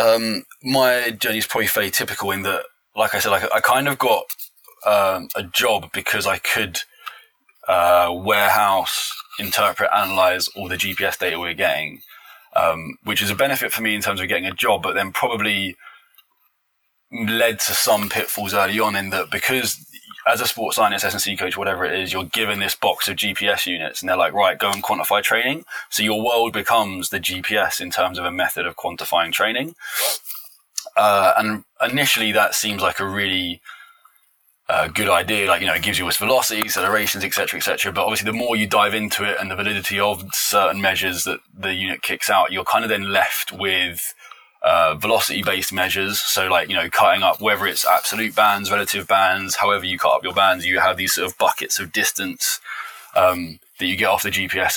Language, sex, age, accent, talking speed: English, male, 20-39, British, 200 wpm